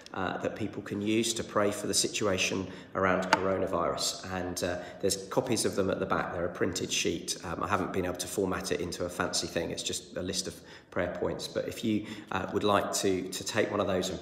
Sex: male